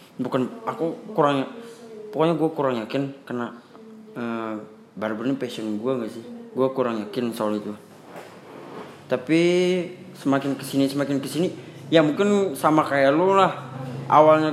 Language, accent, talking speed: Indonesian, native, 130 wpm